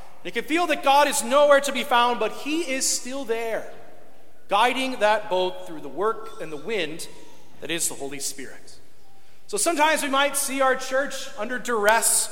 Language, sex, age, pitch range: English, male, 40-59, 200-260 Hz